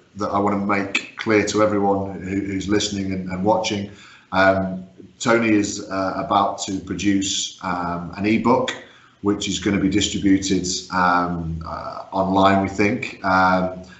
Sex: male